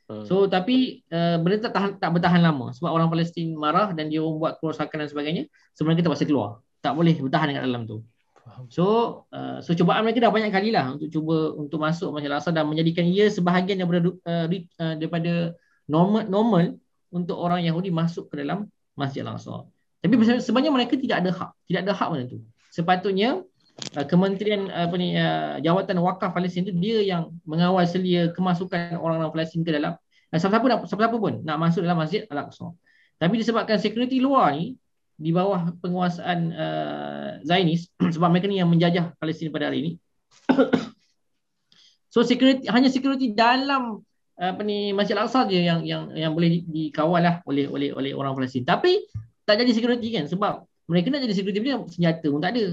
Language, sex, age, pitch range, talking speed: Malay, male, 20-39, 160-205 Hz, 180 wpm